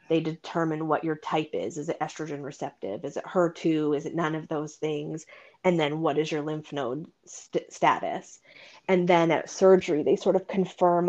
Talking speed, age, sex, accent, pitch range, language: 190 wpm, 30-49, female, American, 155-185 Hz, English